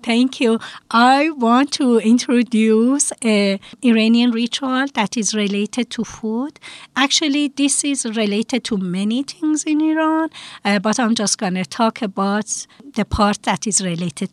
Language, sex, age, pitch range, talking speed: English, female, 50-69, 195-255 Hz, 150 wpm